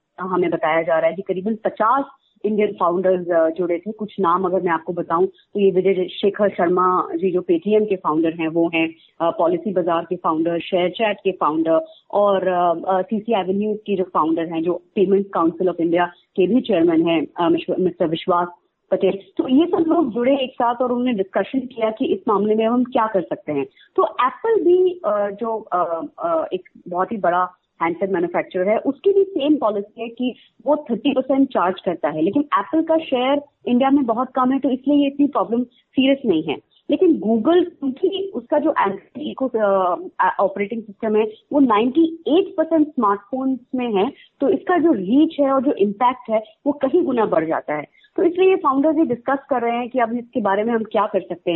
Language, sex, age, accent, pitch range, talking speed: Hindi, female, 30-49, native, 185-285 Hz, 195 wpm